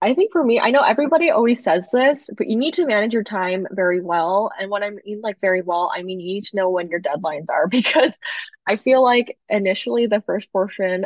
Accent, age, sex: American, 20-39, female